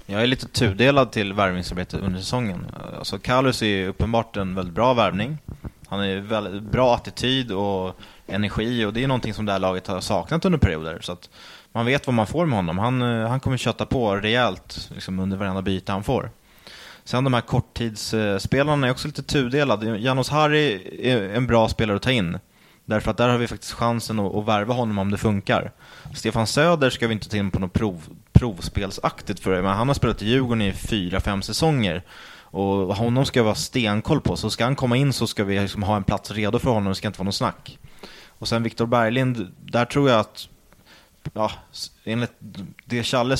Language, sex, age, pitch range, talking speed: English, male, 20-39, 100-125 Hz, 200 wpm